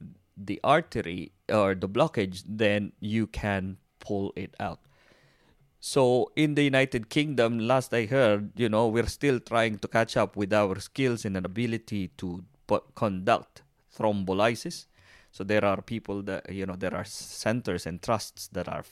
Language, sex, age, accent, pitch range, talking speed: English, male, 20-39, Filipino, 95-120 Hz, 160 wpm